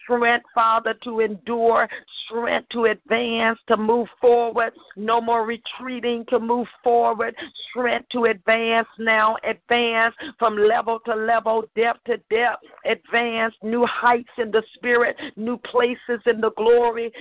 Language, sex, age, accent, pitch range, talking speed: English, female, 50-69, American, 225-240 Hz, 135 wpm